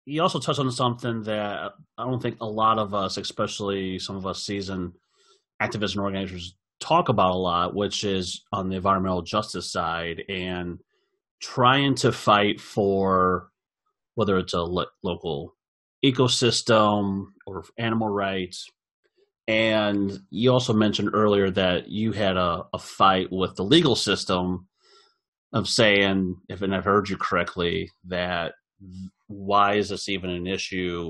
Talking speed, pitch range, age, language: 145 wpm, 90-110 Hz, 30-49, English